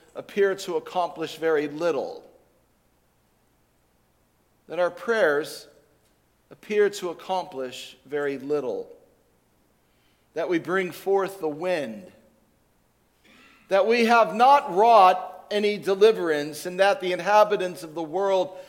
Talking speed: 105 wpm